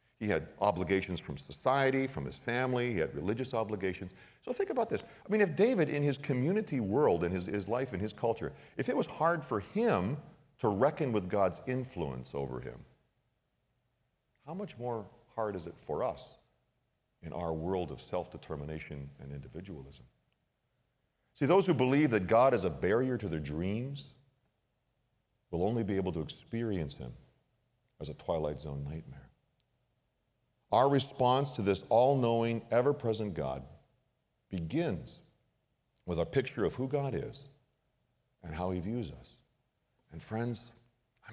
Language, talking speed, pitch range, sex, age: English, 155 wpm, 85-125 Hz, male, 50-69